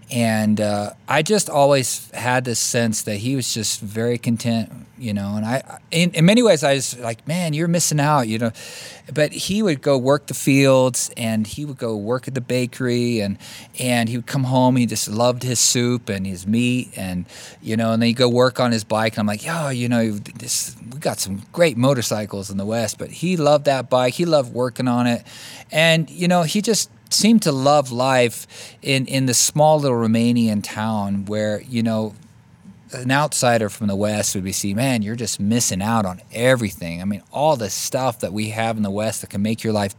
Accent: American